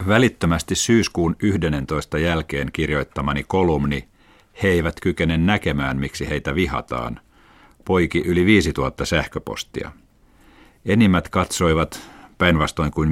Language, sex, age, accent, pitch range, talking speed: Finnish, male, 50-69, native, 70-90 Hz, 95 wpm